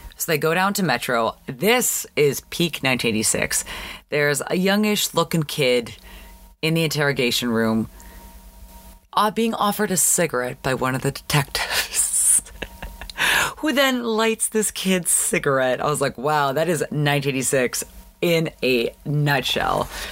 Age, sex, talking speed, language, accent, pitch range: 30-49, female, 135 wpm, English, American, 120-165 Hz